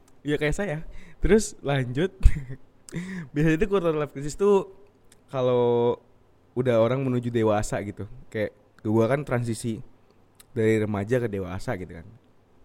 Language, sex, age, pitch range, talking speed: Indonesian, male, 20-39, 110-150 Hz, 130 wpm